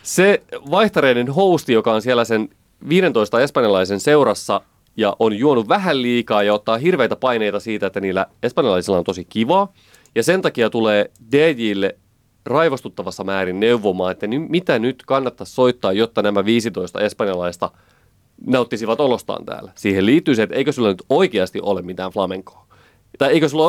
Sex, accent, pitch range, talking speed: male, native, 100-150 Hz, 150 wpm